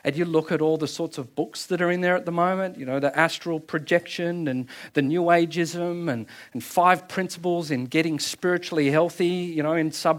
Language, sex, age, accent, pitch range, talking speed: English, male, 40-59, Australian, 155-210 Hz, 220 wpm